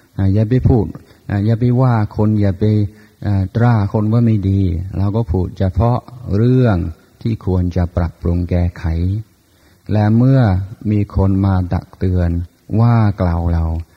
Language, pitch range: Thai, 95-110 Hz